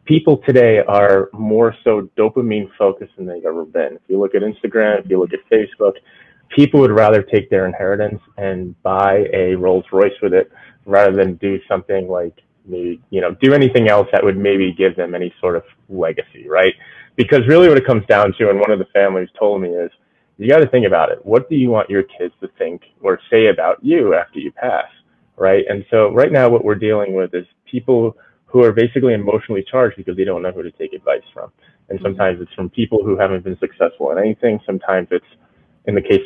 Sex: male